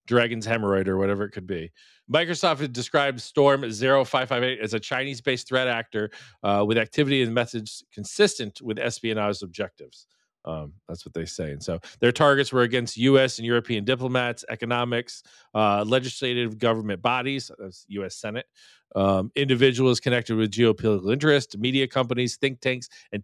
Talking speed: 160 wpm